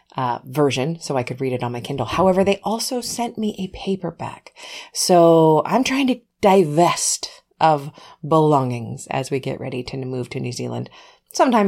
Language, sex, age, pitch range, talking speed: English, female, 30-49, 130-190 Hz, 175 wpm